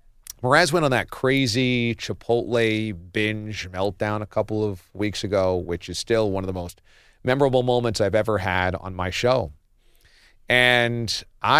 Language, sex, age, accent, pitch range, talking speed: English, male, 40-59, American, 95-125 Hz, 150 wpm